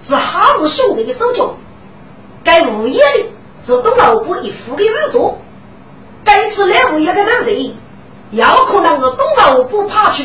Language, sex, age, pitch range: Chinese, female, 50-69, 325-460 Hz